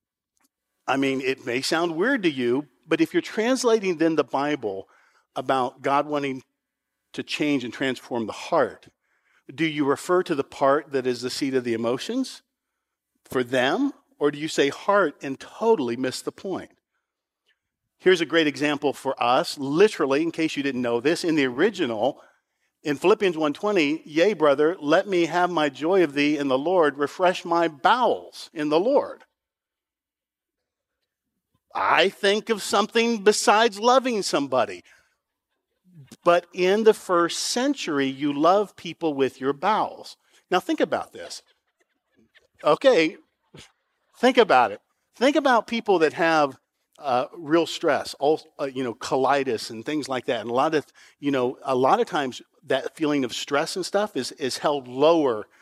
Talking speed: 160 wpm